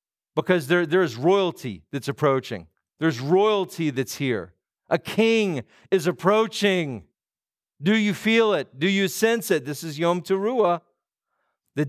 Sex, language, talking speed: male, English, 130 wpm